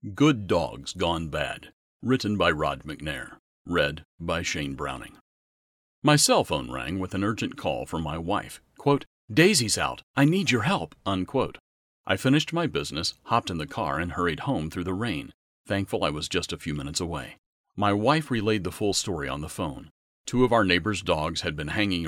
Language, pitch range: English, 80-115 Hz